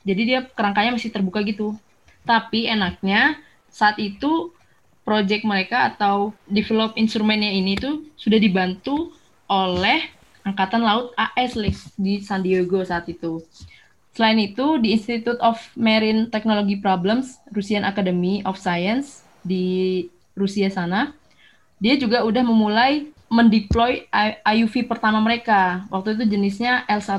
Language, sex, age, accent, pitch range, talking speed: Indonesian, female, 20-39, native, 195-235 Hz, 125 wpm